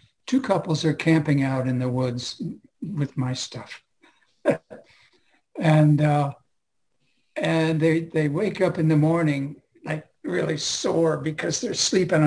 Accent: American